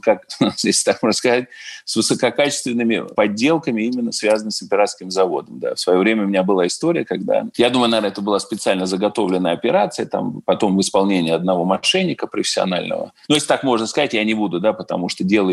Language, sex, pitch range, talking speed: Russian, male, 105-160 Hz, 185 wpm